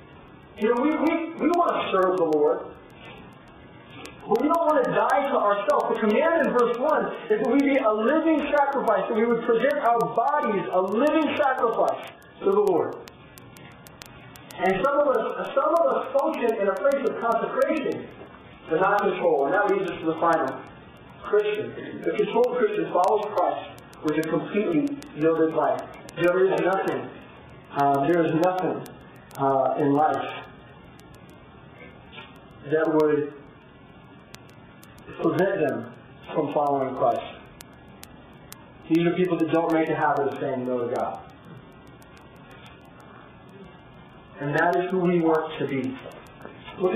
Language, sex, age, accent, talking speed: English, male, 40-59, American, 145 wpm